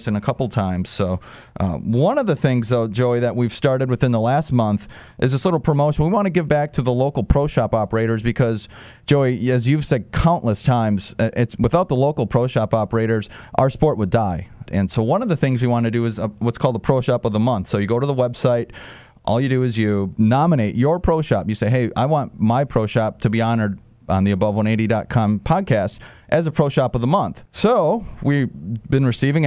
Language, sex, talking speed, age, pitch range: English, male, 230 wpm, 30-49, 110-135 Hz